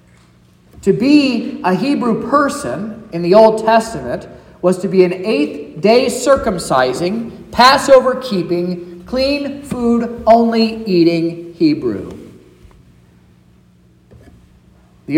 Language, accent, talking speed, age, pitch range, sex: English, American, 70 wpm, 40-59, 170-240 Hz, male